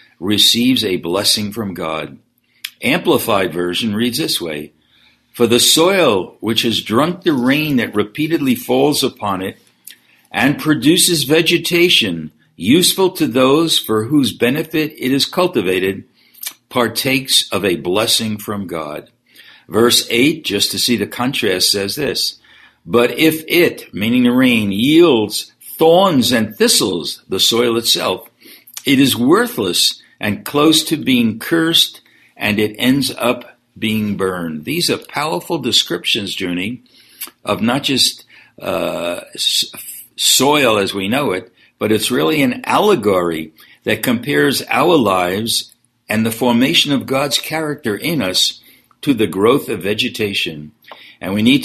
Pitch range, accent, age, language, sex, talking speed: 105-155 Hz, American, 60-79, English, male, 135 wpm